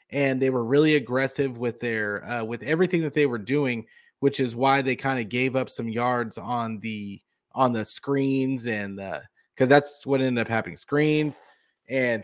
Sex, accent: male, American